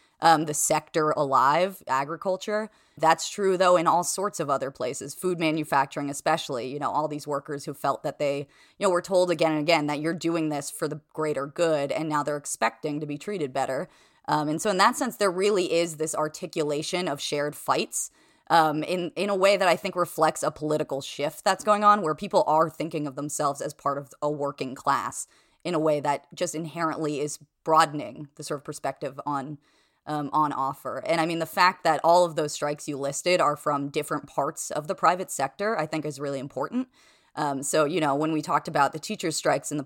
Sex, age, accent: female, 20-39, American